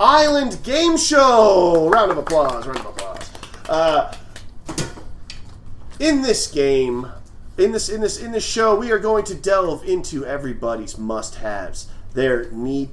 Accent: American